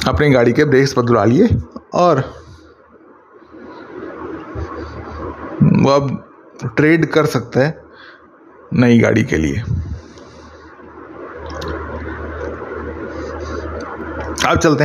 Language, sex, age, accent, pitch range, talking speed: Hindi, male, 30-49, native, 120-170 Hz, 75 wpm